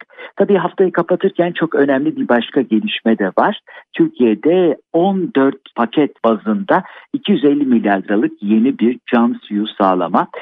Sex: male